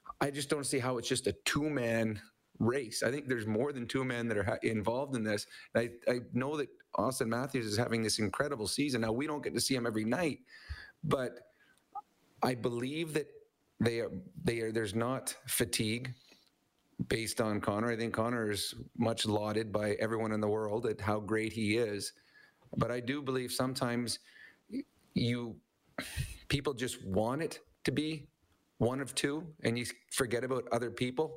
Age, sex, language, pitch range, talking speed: 40-59, male, English, 110-125 Hz, 180 wpm